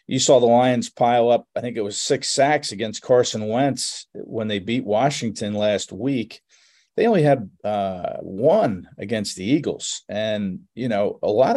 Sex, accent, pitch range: male, American, 110-135 Hz